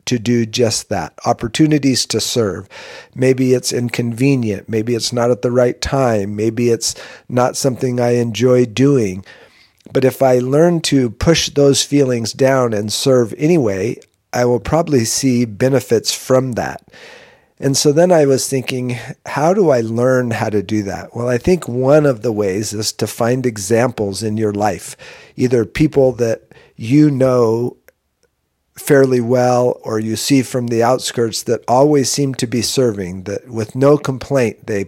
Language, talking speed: English, 165 wpm